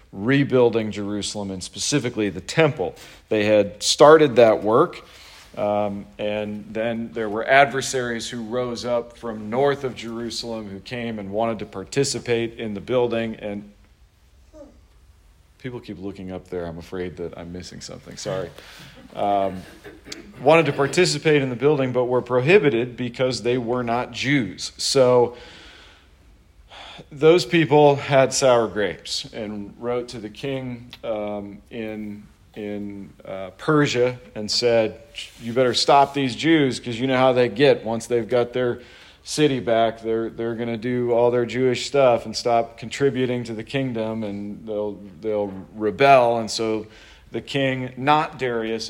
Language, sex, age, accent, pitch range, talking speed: English, male, 40-59, American, 105-125 Hz, 150 wpm